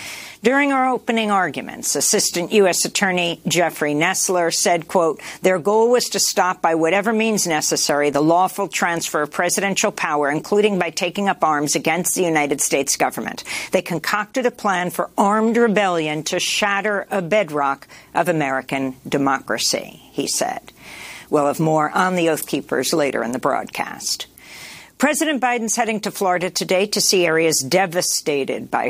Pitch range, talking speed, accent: 160-200 Hz, 155 wpm, American